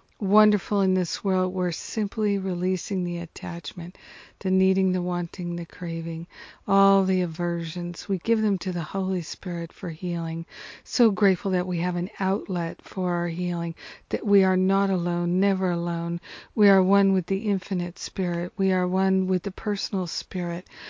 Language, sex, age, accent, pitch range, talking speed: English, female, 50-69, American, 180-195 Hz, 165 wpm